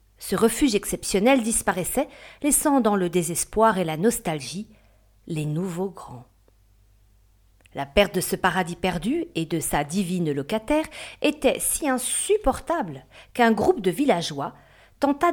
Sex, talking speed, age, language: female, 130 wpm, 40-59, French